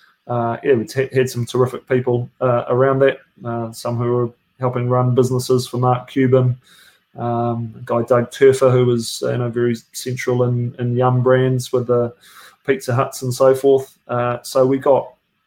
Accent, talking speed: British, 165 wpm